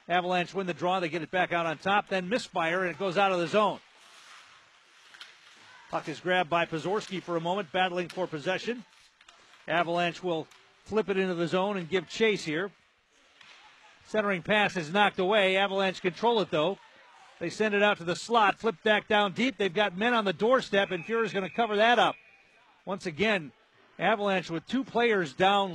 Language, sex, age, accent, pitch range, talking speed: English, male, 50-69, American, 160-200 Hz, 190 wpm